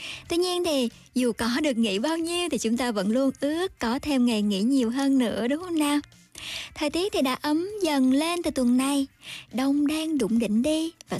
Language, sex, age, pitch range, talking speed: Vietnamese, male, 20-39, 240-310 Hz, 220 wpm